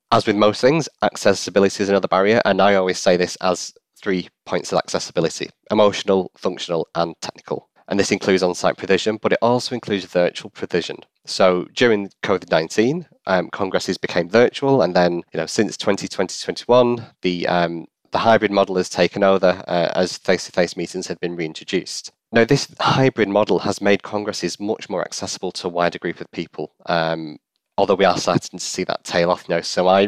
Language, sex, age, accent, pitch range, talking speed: English, male, 30-49, British, 90-105 Hz, 180 wpm